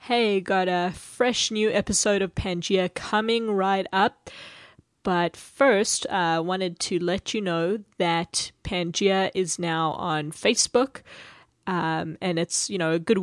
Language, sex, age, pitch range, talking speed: English, female, 20-39, 170-195 Hz, 145 wpm